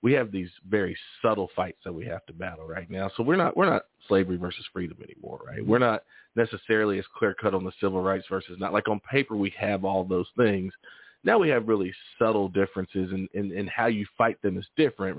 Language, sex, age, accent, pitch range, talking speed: English, male, 40-59, American, 95-115 Hz, 230 wpm